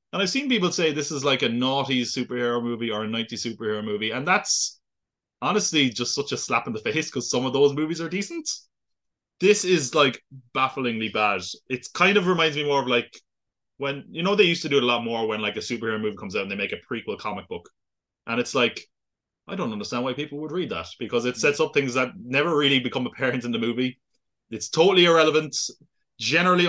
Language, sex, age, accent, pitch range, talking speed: English, male, 20-39, Irish, 120-160 Hz, 225 wpm